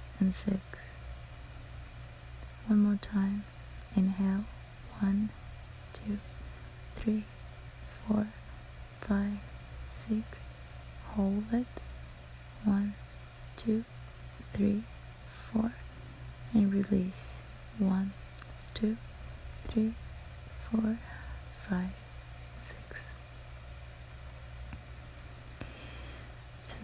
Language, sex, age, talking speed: English, female, 20-39, 60 wpm